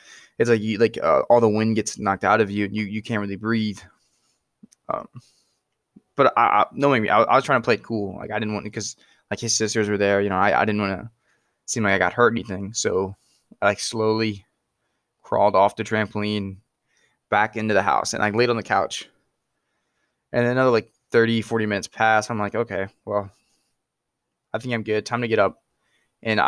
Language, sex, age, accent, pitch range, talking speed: English, male, 20-39, American, 105-115 Hz, 215 wpm